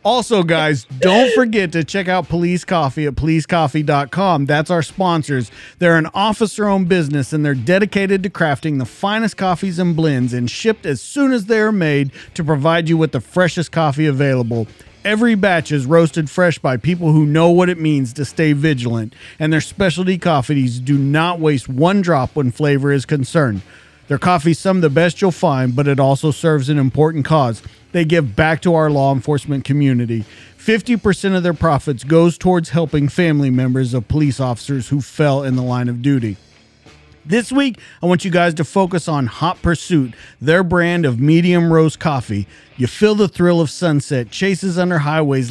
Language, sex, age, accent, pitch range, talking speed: English, male, 40-59, American, 140-175 Hz, 185 wpm